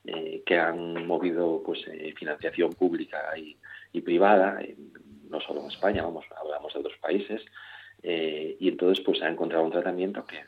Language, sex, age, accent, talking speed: Spanish, male, 40-59, Spanish, 180 wpm